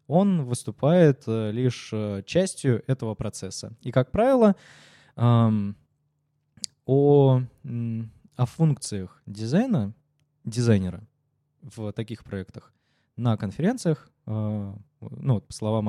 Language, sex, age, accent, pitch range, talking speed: Russian, male, 20-39, native, 110-145 Hz, 85 wpm